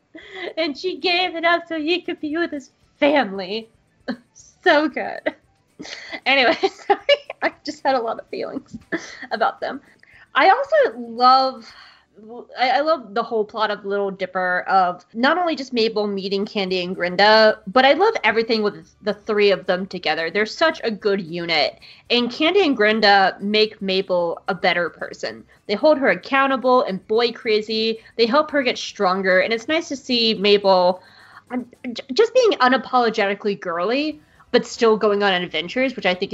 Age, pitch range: 20-39, 195-265 Hz